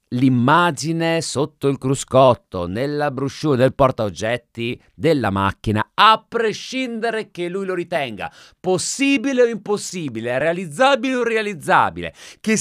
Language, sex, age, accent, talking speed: Italian, male, 30-49, native, 110 wpm